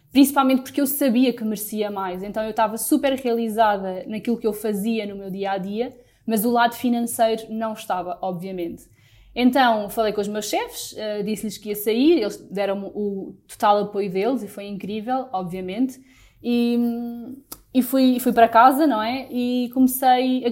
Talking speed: 165 wpm